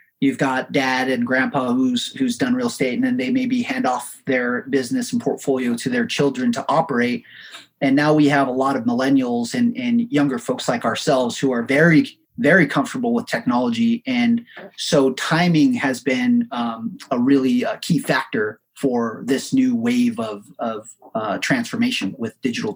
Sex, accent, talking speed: male, American, 175 wpm